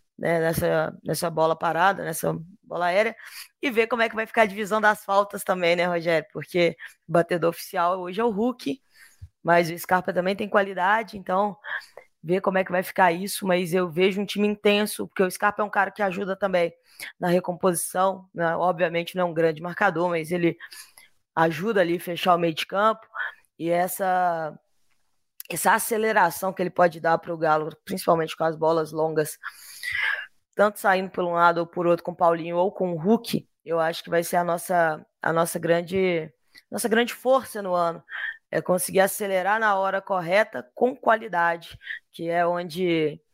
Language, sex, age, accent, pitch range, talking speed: Portuguese, female, 20-39, Brazilian, 170-200 Hz, 185 wpm